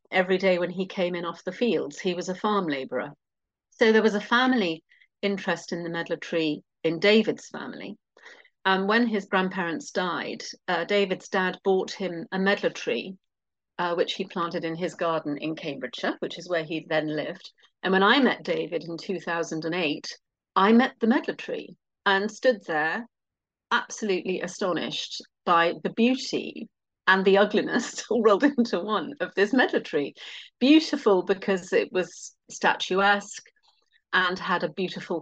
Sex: female